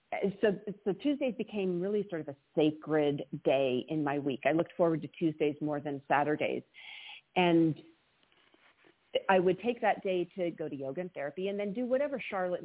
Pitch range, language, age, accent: 150-200 Hz, English, 40-59, American